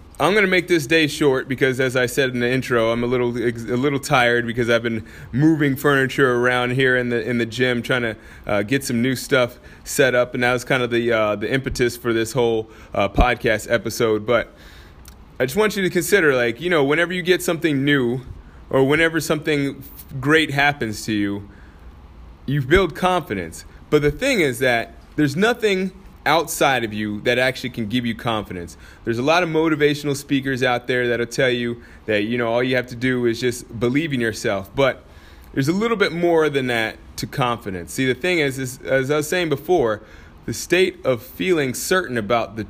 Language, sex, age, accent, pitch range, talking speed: English, male, 20-39, American, 110-145 Hz, 205 wpm